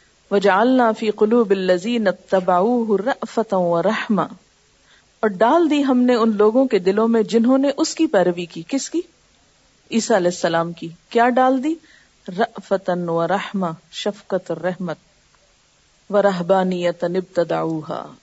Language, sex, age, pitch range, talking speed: Urdu, female, 50-69, 185-255 Hz, 115 wpm